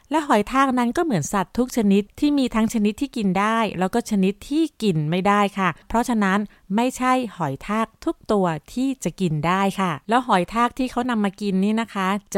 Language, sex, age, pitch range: Thai, female, 20-39, 190-245 Hz